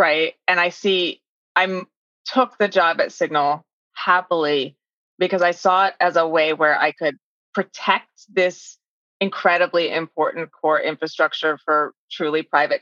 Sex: female